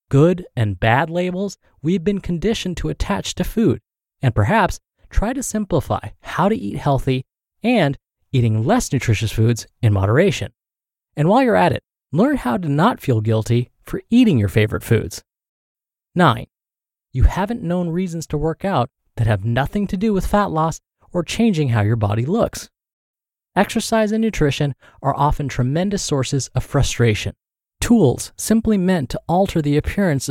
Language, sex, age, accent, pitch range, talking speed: English, male, 20-39, American, 120-180 Hz, 160 wpm